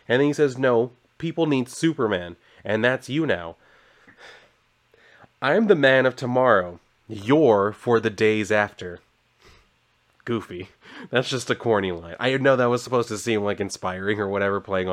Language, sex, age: English, male, 30-49